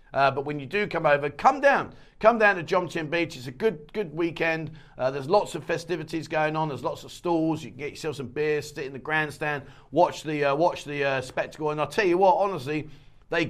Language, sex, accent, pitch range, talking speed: English, male, British, 135-185 Hz, 240 wpm